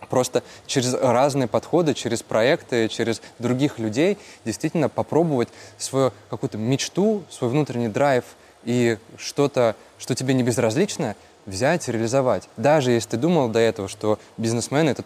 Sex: male